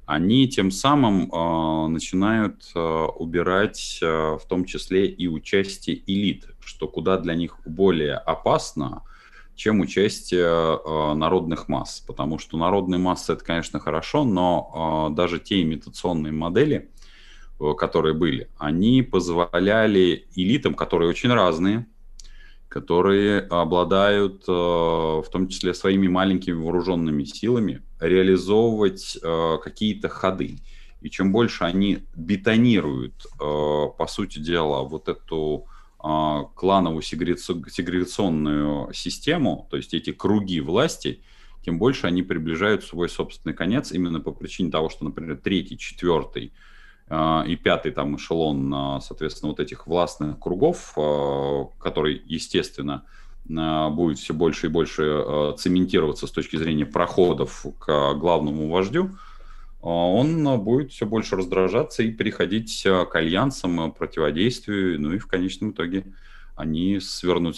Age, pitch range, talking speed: 20-39, 80-95 Hz, 120 wpm